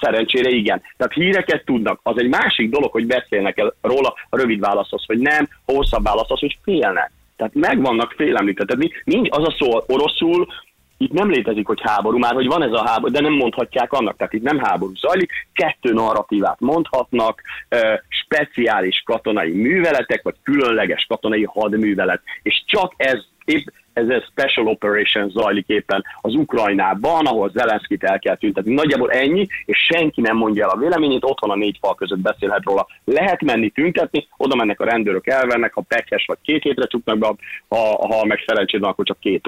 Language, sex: Hungarian, male